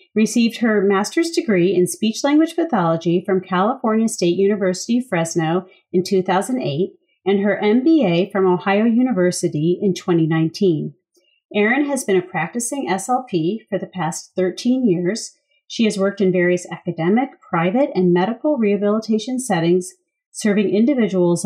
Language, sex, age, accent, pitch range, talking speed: English, female, 40-59, American, 180-245 Hz, 130 wpm